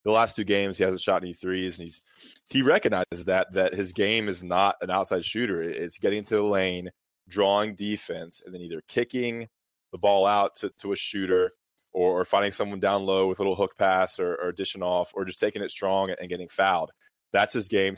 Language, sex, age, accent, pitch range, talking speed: English, male, 20-39, American, 90-105 Hz, 220 wpm